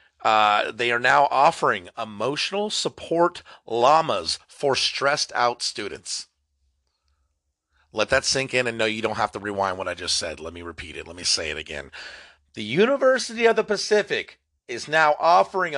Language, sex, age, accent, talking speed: English, male, 40-59, American, 165 wpm